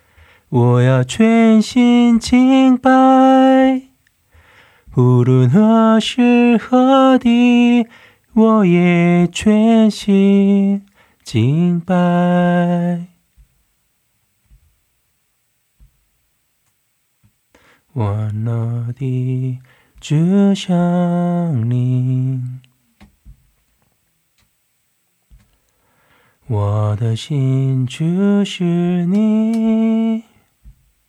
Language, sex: Korean, male